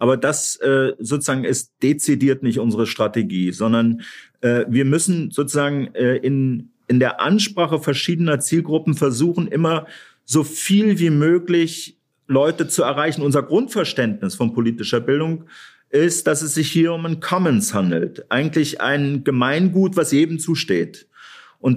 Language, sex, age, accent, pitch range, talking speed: German, male, 40-59, German, 135-170 Hz, 140 wpm